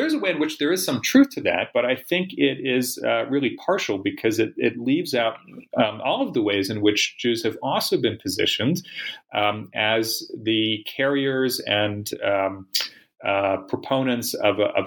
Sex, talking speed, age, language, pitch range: male, 195 wpm, 30-49, English, 100-135 Hz